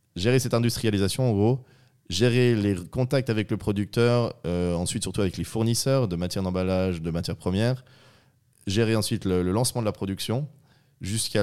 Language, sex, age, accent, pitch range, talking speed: French, male, 20-39, French, 90-120 Hz, 170 wpm